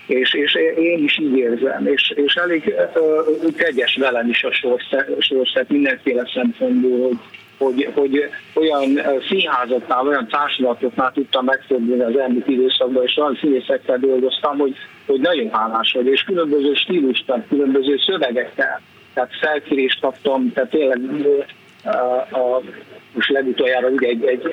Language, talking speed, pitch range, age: Hungarian, 135 wpm, 125-155 Hz, 50-69